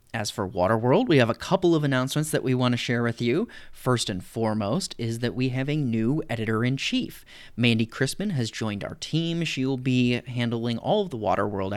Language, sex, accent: English, male, American